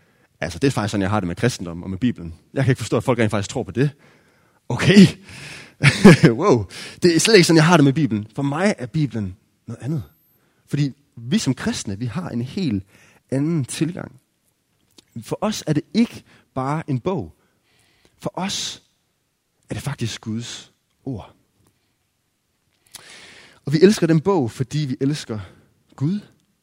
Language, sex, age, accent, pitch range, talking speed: Danish, male, 30-49, native, 105-145 Hz, 170 wpm